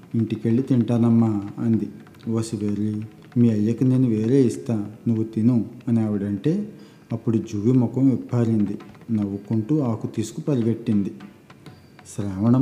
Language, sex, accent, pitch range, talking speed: Telugu, male, native, 110-125 Hz, 105 wpm